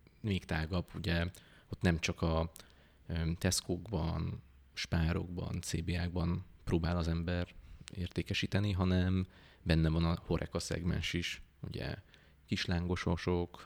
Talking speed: 100 wpm